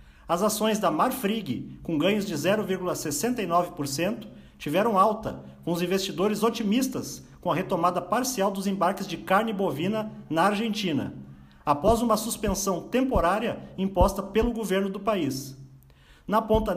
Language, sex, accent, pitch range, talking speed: Portuguese, male, Brazilian, 165-215 Hz, 130 wpm